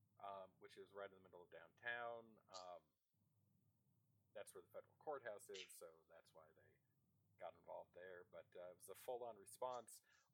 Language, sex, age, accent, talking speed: English, male, 40-59, American, 185 wpm